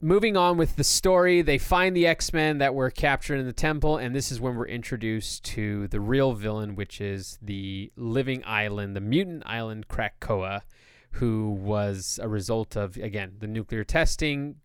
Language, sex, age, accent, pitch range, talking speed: English, male, 30-49, American, 105-140 Hz, 175 wpm